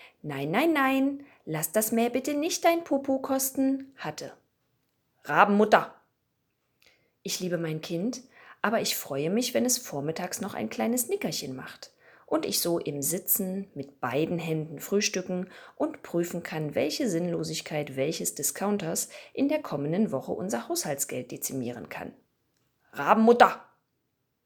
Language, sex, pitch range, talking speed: German, female, 150-225 Hz, 135 wpm